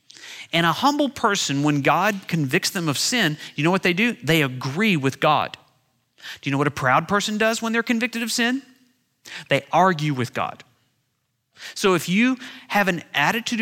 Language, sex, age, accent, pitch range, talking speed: English, male, 40-59, American, 140-215 Hz, 185 wpm